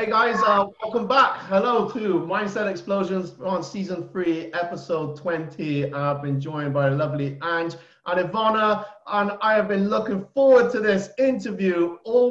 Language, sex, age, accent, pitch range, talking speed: English, male, 30-49, British, 140-190 Hz, 155 wpm